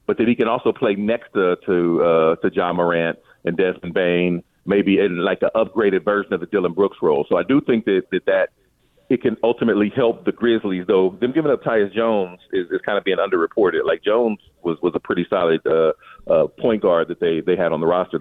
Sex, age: male, 40-59